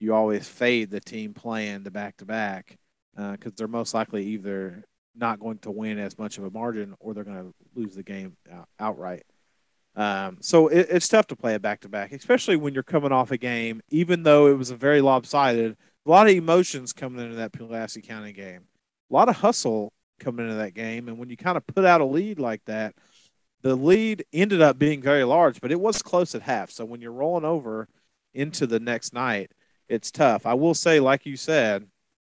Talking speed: 210 wpm